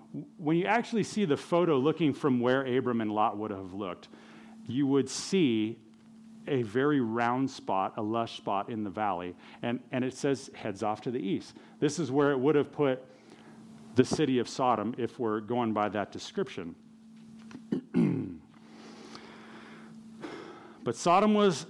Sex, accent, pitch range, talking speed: male, American, 115-160 Hz, 160 wpm